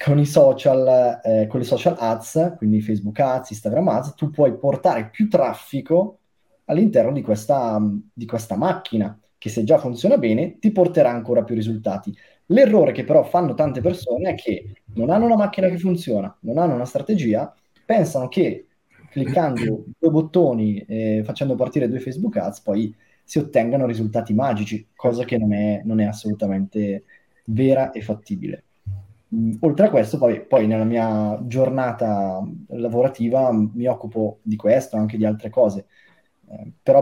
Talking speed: 155 wpm